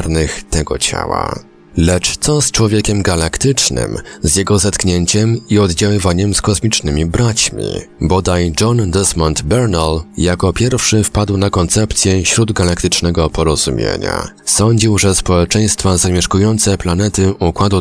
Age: 30-49